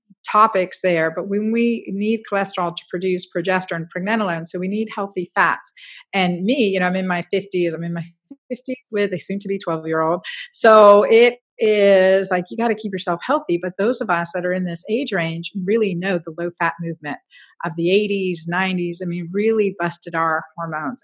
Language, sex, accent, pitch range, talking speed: English, female, American, 180-220 Hz, 205 wpm